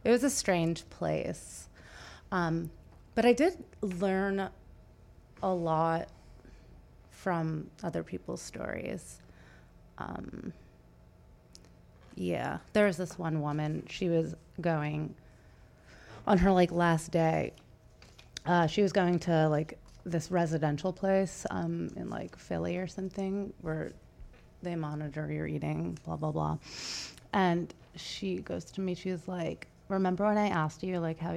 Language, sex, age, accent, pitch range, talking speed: English, female, 30-49, American, 150-185 Hz, 130 wpm